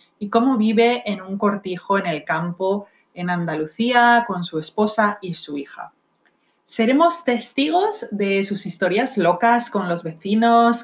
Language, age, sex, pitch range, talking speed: Spanish, 30-49, female, 185-230 Hz, 145 wpm